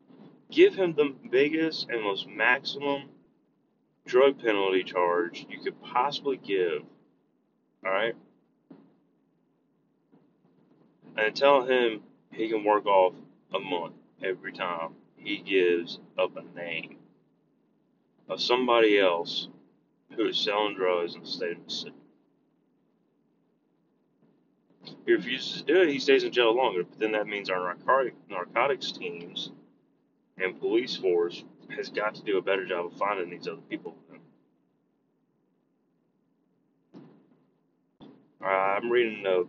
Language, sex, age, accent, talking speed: English, male, 30-49, American, 120 wpm